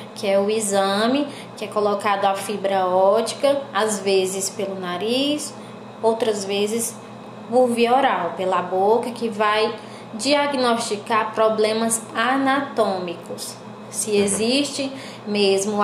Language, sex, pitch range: Portuguese, female, 200-250 Hz